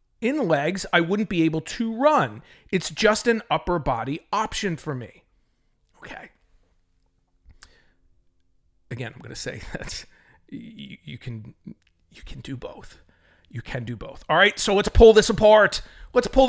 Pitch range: 155-235 Hz